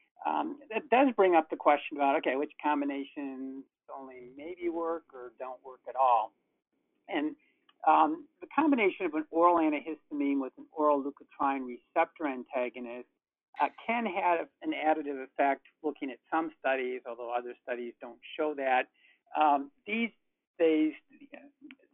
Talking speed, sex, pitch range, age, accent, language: 140 wpm, male, 125-200 Hz, 50-69, American, English